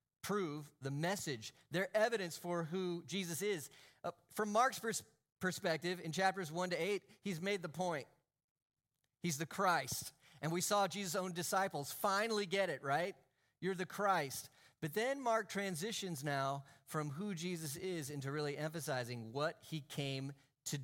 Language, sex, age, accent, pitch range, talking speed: English, male, 40-59, American, 135-180 Hz, 160 wpm